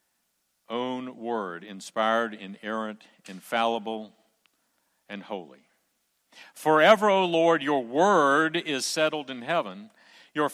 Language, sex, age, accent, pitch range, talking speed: English, male, 60-79, American, 120-185 Hz, 95 wpm